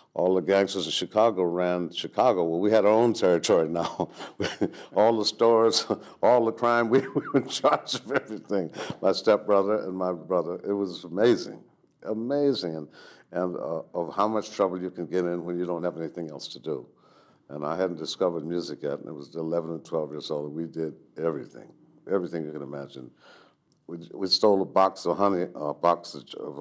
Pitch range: 80-100 Hz